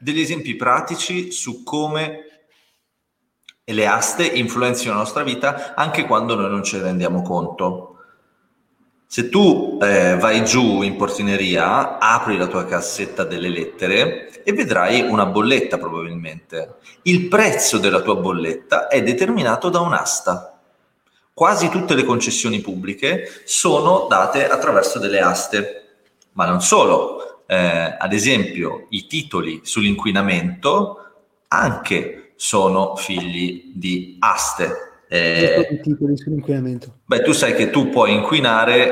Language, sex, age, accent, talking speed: Italian, male, 30-49, native, 125 wpm